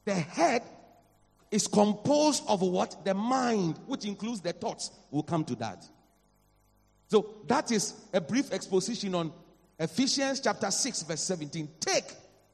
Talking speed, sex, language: 140 wpm, male, English